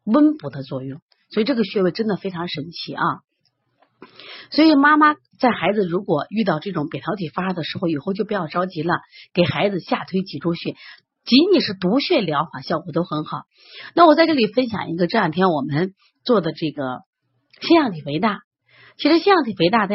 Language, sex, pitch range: Chinese, female, 170-260 Hz